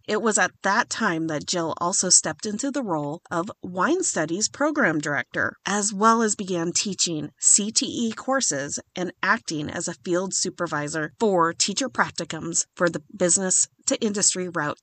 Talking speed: 160 wpm